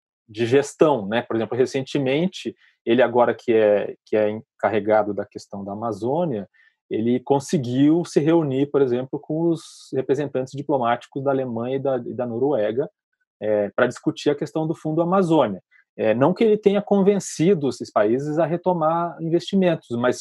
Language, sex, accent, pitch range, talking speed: Portuguese, male, Brazilian, 125-170 Hz, 160 wpm